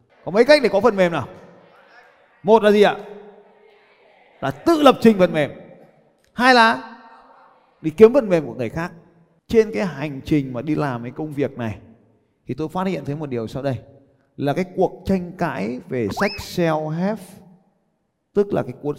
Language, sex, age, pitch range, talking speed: Vietnamese, male, 20-39, 130-190 Hz, 185 wpm